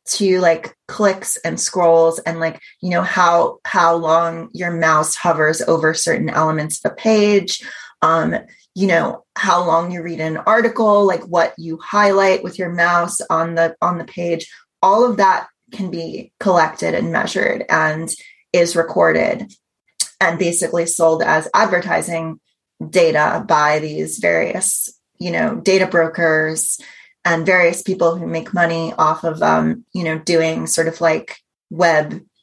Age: 20-39